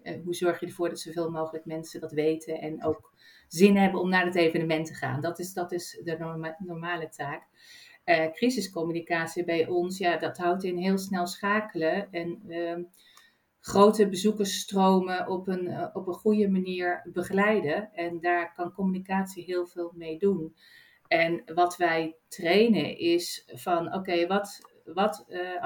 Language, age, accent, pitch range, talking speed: Dutch, 40-59, Dutch, 165-195 Hz, 165 wpm